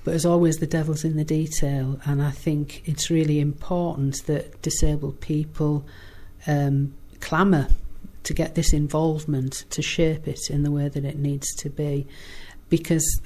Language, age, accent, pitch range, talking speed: English, 40-59, British, 145-170 Hz, 160 wpm